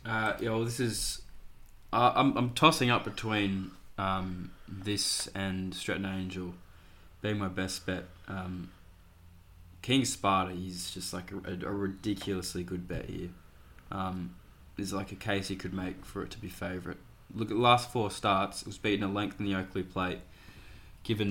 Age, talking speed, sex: 20-39, 170 wpm, male